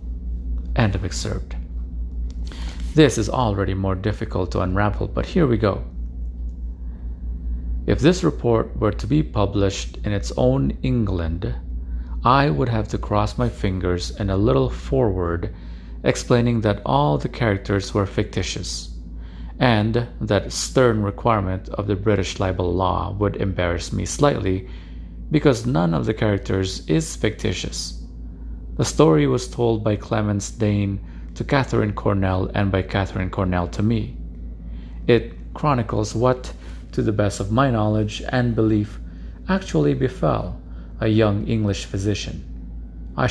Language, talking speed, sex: English, 135 wpm, male